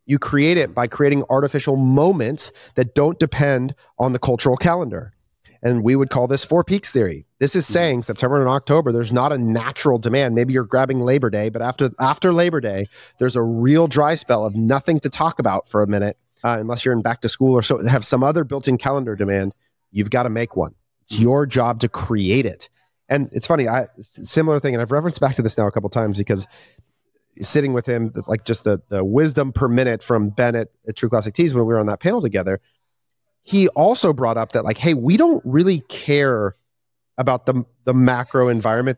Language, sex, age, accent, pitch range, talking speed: English, male, 30-49, American, 115-145 Hz, 215 wpm